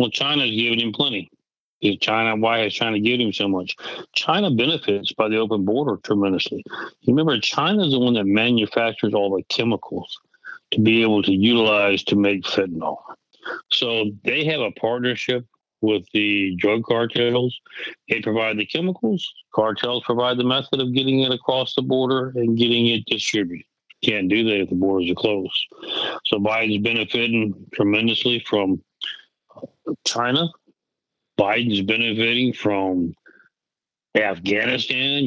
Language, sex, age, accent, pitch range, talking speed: English, male, 60-79, American, 105-130 Hz, 140 wpm